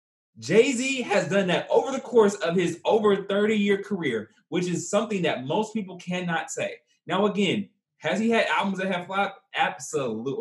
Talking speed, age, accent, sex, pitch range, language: 185 wpm, 20-39, American, male, 145-215 Hz, English